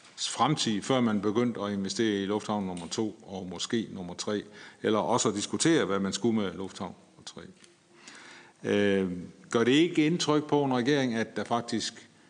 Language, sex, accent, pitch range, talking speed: Danish, male, native, 100-125 Hz, 175 wpm